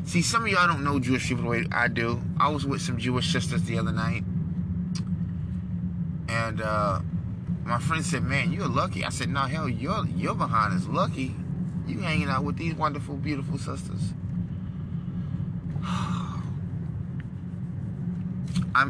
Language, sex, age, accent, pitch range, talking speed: English, male, 20-39, American, 130-165 Hz, 150 wpm